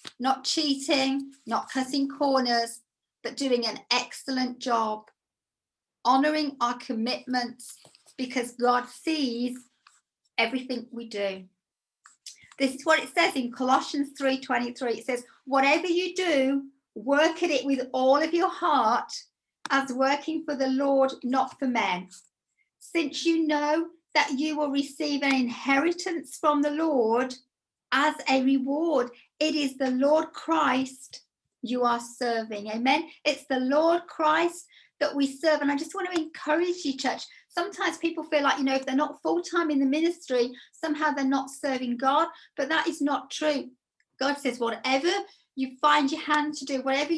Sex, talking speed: female, 155 wpm